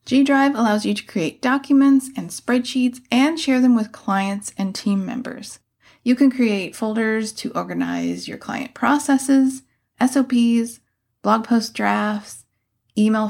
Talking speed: 135 wpm